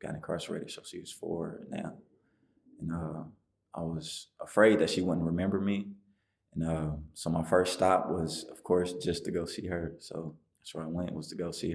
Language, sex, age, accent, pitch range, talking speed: English, male, 20-39, American, 80-100 Hz, 205 wpm